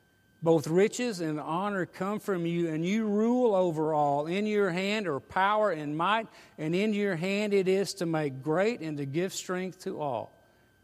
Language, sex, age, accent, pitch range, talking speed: English, male, 50-69, American, 145-185 Hz, 190 wpm